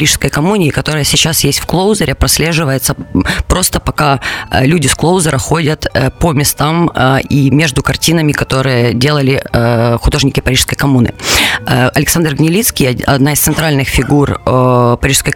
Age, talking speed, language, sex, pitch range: 20-39, 120 wpm, Russian, female, 120-145 Hz